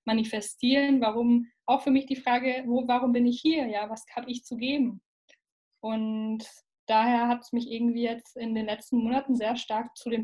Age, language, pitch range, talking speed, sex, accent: 10-29, German, 215-245 Hz, 190 wpm, female, German